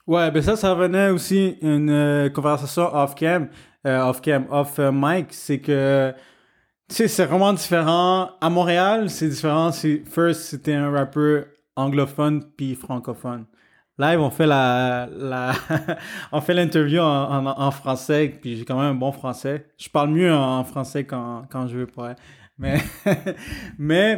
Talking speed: 155 wpm